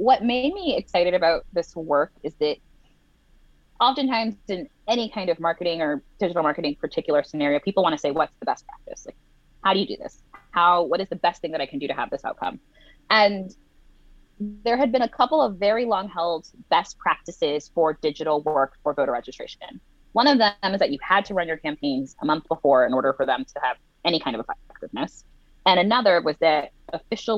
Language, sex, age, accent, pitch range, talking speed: English, female, 20-39, American, 145-210 Hz, 210 wpm